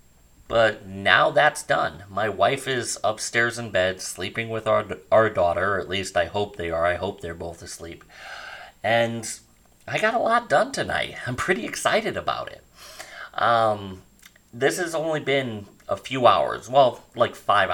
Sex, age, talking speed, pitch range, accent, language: male, 30-49, 170 wpm, 90-115 Hz, American, English